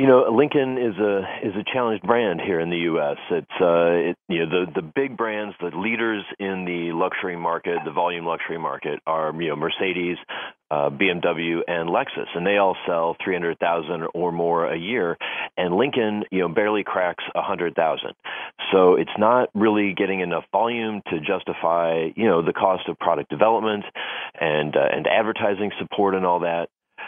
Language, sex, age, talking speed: English, male, 40-59, 175 wpm